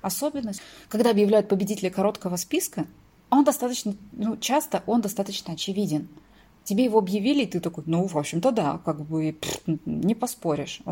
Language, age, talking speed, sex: Russian, 30-49, 150 wpm, female